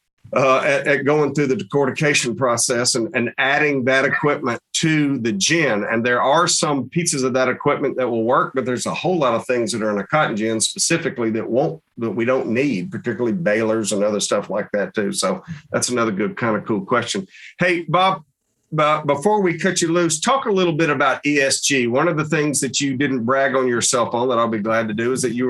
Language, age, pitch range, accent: English, 50-69, 125-155 Hz, American